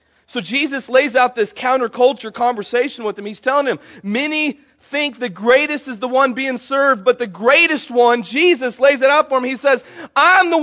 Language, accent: English, American